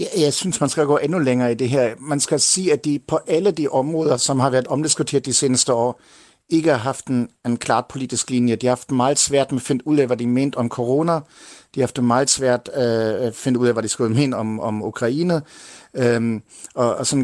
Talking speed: 245 wpm